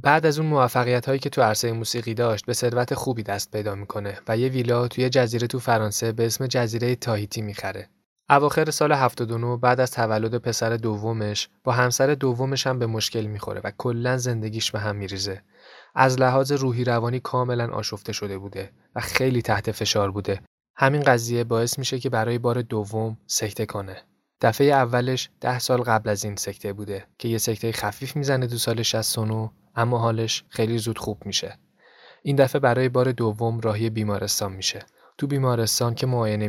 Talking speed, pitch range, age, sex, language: 175 wpm, 110-125 Hz, 20-39, male, Persian